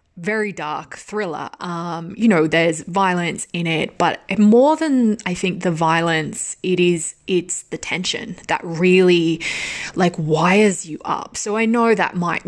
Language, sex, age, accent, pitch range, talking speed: English, female, 20-39, Australian, 170-220 Hz, 160 wpm